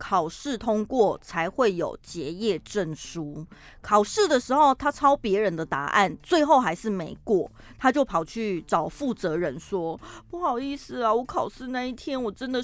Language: Chinese